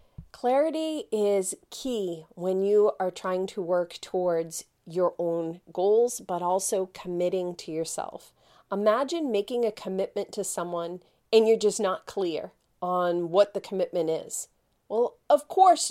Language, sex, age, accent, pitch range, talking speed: English, female, 40-59, American, 185-250 Hz, 140 wpm